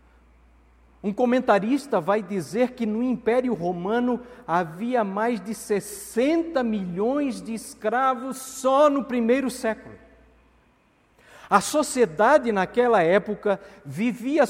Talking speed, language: 100 wpm, Portuguese